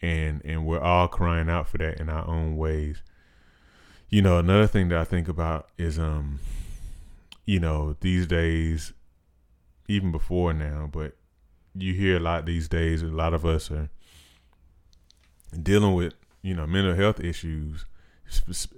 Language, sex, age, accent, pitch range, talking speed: English, male, 20-39, American, 80-90 Hz, 155 wpm